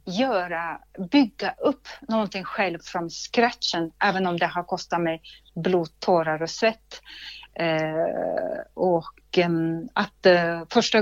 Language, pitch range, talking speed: Swedish, 175-230 Hz, 110 wpm